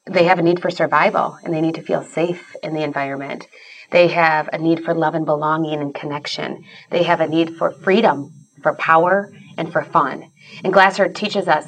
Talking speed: 205 wpm